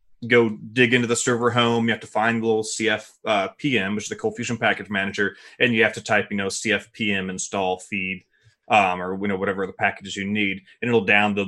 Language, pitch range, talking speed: English, 100-115 Hz, 220 wpm